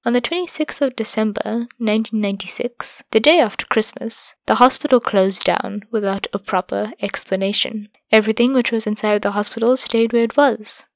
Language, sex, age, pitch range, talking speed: English, female, 20-39, 210-255 Hz, 155 wpm